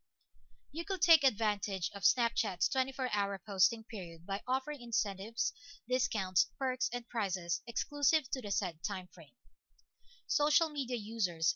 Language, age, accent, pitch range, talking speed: English, 20-39, Filipino, 185-240 Hz, 130 wpm